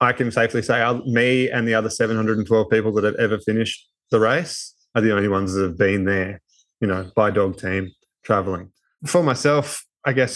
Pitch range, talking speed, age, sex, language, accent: 105-120 Hz, 195 wpm, 20-39, male, English, Australian